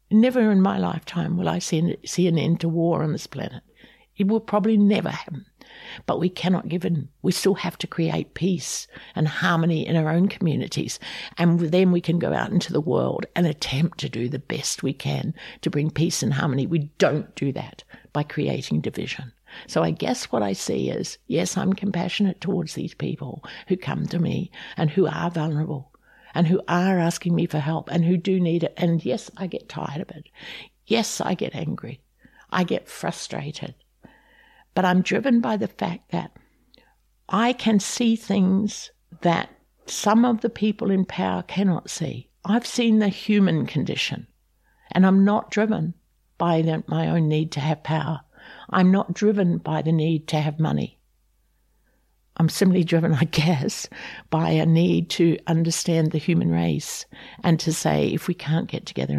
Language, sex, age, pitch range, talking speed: English, female, 60-79, 155-190 Hz, 180 wpm